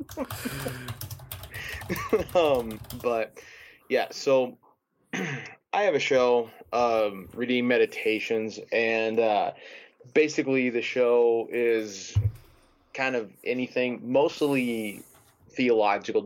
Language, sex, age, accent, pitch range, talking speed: English, male, 20-39, American, 100-120 Hz, 80 wpm